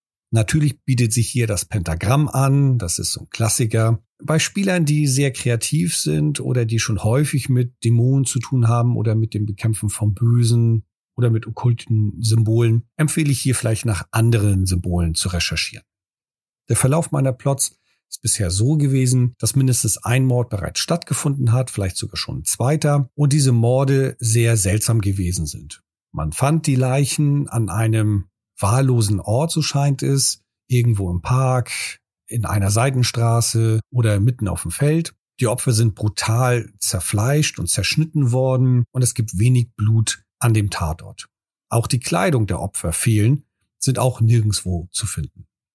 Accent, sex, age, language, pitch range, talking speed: German, male, 40-59, German, 105-135 Hz, 160 wpm